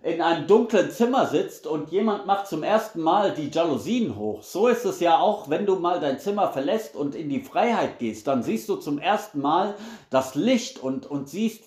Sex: male